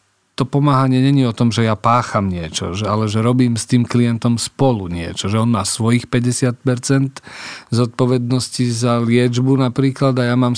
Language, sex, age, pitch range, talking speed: Slovak, male, 40-59, 110-125 Hz, 175 wpm